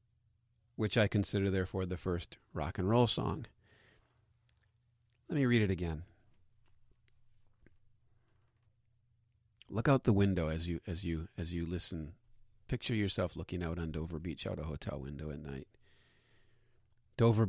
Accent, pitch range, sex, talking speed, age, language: American, 100-120 Hz, male, 135 wpm, 40-59, English